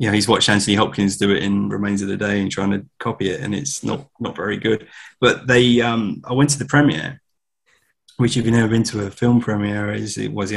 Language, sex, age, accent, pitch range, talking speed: English, male, 20-39, British, 100-115 Hz, 250 wpm